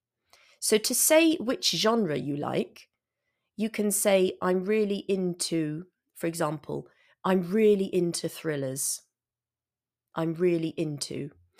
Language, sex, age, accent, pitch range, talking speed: English, female, 30-49, British, 160-210 Hz, 115 wpm